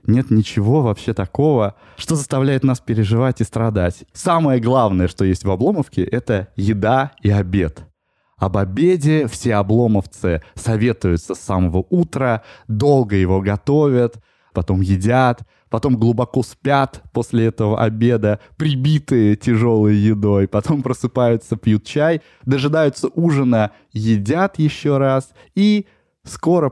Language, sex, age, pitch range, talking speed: Russian, male, 20-39, 105-140 Hz, 120 wpm